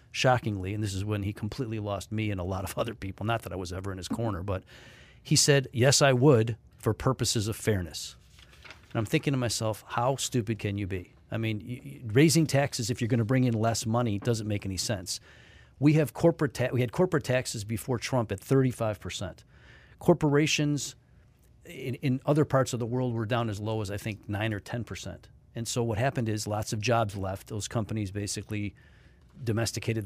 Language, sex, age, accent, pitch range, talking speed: English, male, 40-59, American, 100-125 Hz, 205 wpm